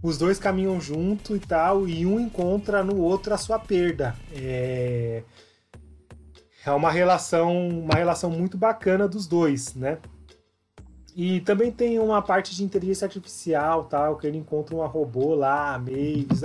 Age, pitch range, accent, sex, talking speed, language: 30-49, 140-175 Hz, Brazilian, male, 150 wpm, Portuguese